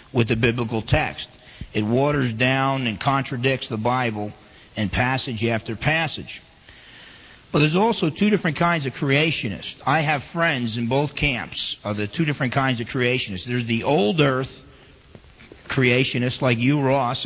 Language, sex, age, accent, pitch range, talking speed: English, male, 40-59, American, 120-145 Hz, 155 wpm